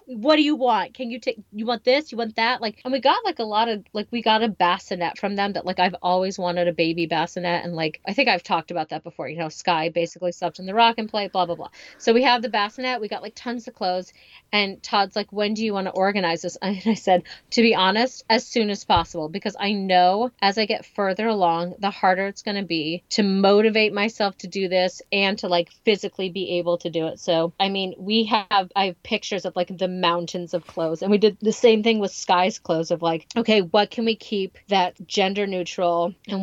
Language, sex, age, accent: English, female, 30-49, American